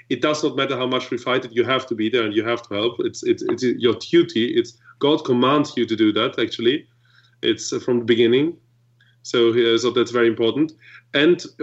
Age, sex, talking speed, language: 30-49, male, 215 wpm, English